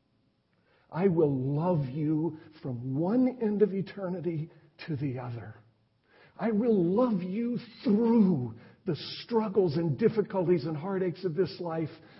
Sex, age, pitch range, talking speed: male, 60-79, 125-170 Hz, 130 wpm